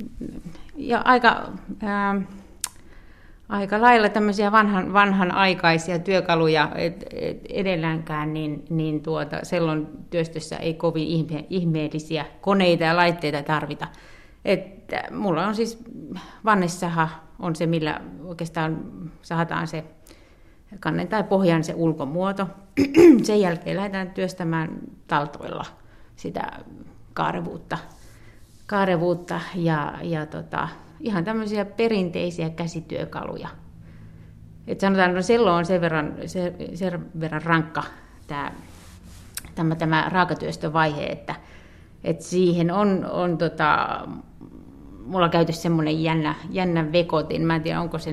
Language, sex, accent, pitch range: Finnish, female, native, 160-190 Hz